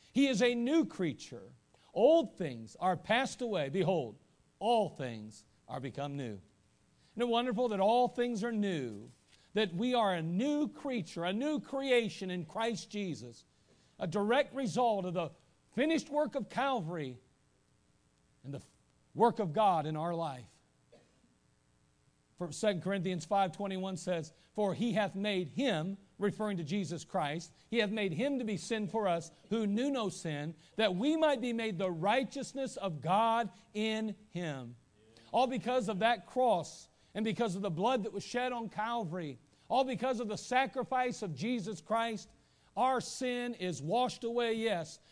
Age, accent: 50-69, American